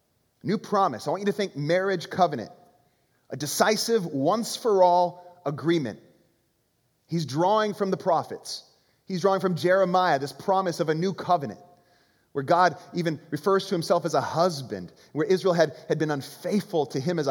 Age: 30-49